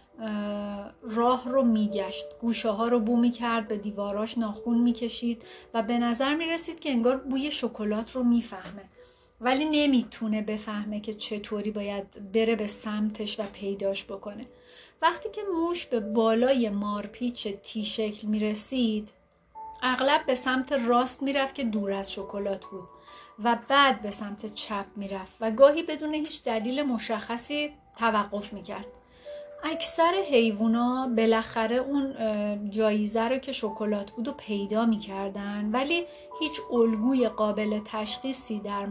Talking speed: 140 wpm